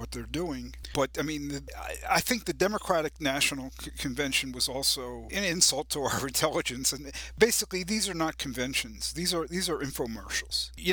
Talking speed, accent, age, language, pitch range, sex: 185 wpm, American, 50-69, English, 135-165 Hz, male